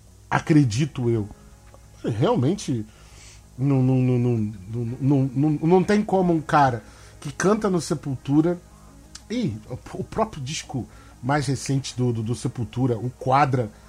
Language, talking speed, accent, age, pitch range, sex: Portuguese, 135 wpm, Brazilian, 40-59, 105-150 Hz, male